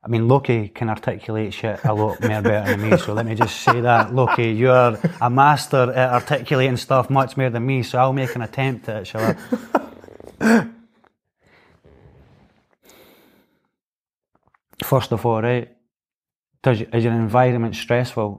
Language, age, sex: English, 20-39, male